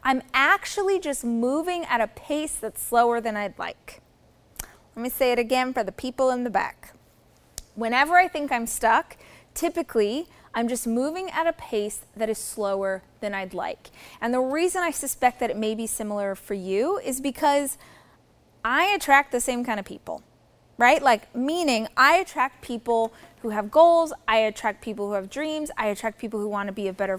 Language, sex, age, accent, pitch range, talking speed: English, female, 20-39, American, 215-295 Hz, 190 wpm